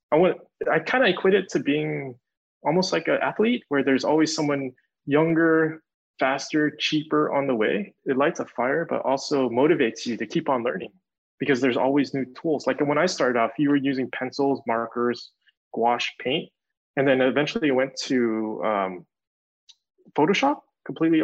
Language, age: Vietnamese, 20-39